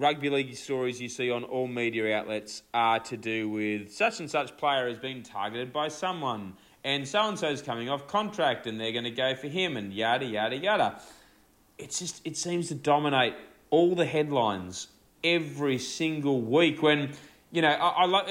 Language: English